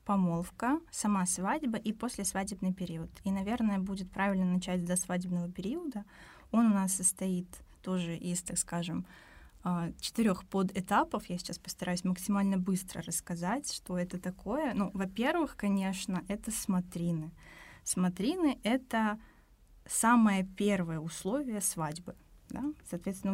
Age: 20-39